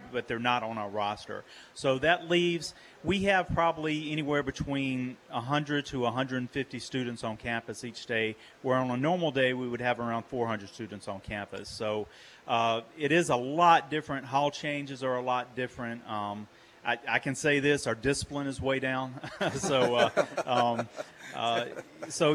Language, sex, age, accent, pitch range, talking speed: English, male, 40-59, American, 120-145 Hz, 170 wpm